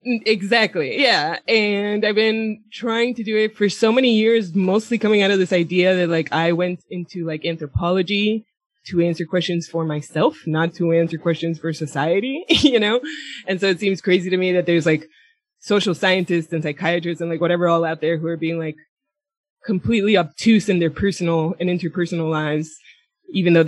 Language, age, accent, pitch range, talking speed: English, 20-39, American, 165-215 Hz, 185 wpm